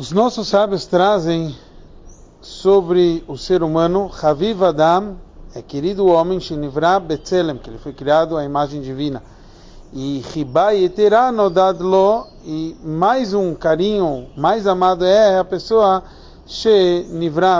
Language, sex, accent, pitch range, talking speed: Portuguese, male, Brazilian, 150-195 Hz, 125 wpm